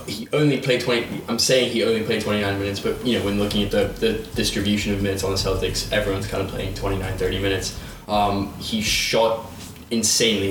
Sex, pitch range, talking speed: male, 95-105 Hz, 205 wpm